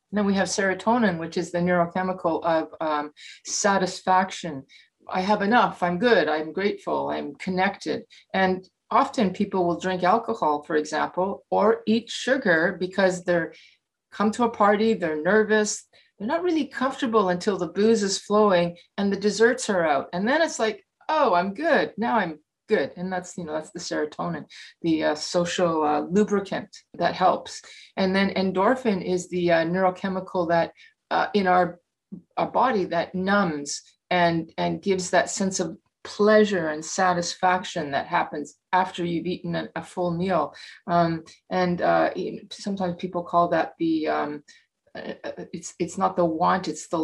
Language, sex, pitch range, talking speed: English, female, 170-210 Hz, 160 wpm